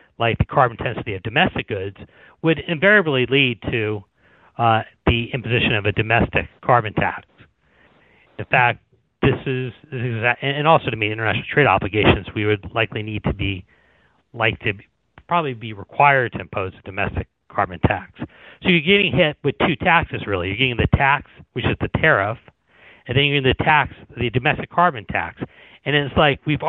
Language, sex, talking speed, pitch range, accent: English, male, 175 wpm, 110-140 Hz, American